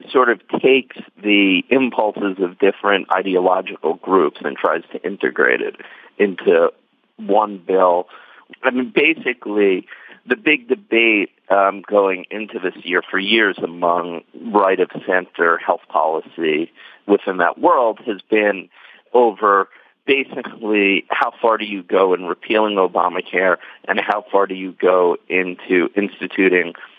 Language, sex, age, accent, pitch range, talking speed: English, male, 40-59, American, 90-110 Hz, 125 wpm